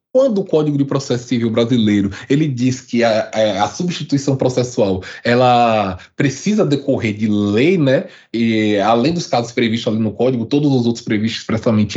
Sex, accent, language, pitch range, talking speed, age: male, Brazilian, Portuguese, 135-205 Hz, 170 wpm, 20-39